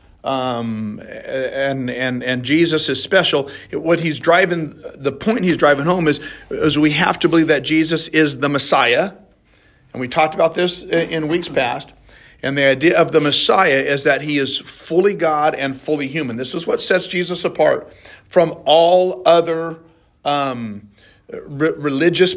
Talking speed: 165 wpm